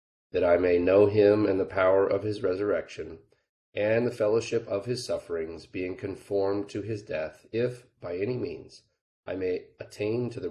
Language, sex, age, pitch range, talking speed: English, male, 30-49, 95-115 Hz, 175 wpm